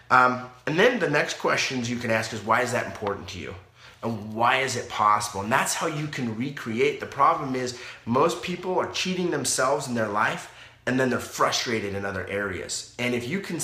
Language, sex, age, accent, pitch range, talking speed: English, male, 30-49, American, 115-150 Hz, 215 wpm